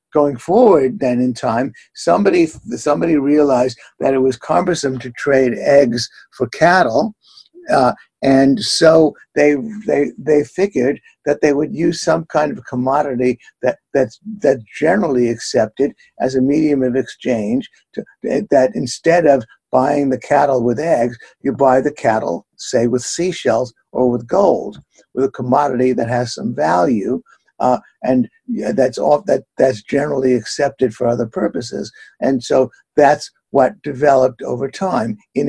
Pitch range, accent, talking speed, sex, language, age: 125-150 Hz, American, 140 wpm, male, English, 60-79